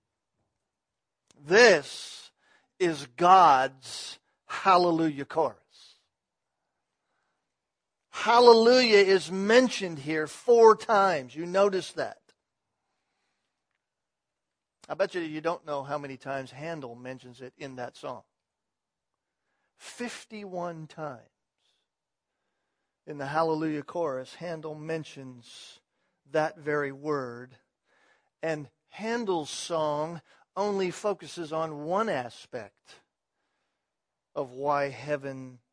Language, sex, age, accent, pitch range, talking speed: English, male, 50-69, American, 150-220 Hz, 85 wpm